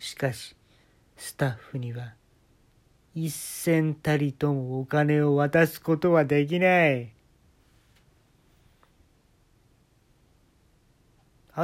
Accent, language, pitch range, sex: native, Japanese, 120-165 Hz, male